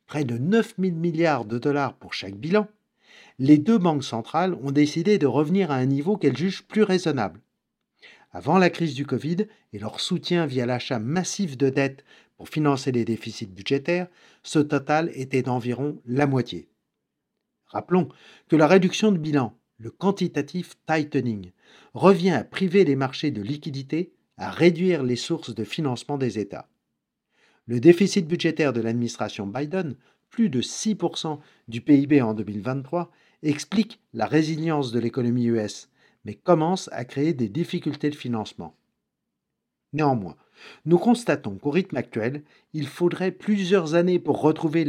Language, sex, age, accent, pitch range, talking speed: French, male, 50-69, French, 125-175 Hz, 150 wpm